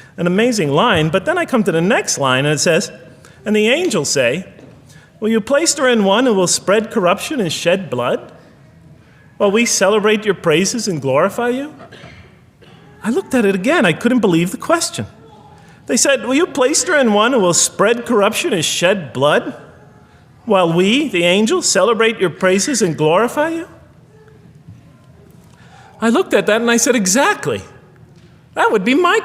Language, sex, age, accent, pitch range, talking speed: English, male, 40-59, American, 200-320 Hz, 175 wpm